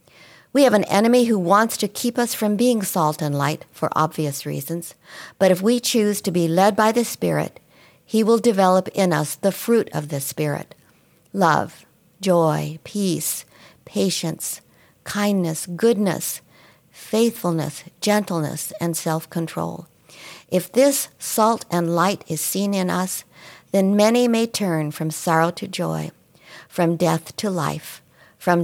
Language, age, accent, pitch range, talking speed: English, 50-69, American, 155-205 Hz, 140 wpm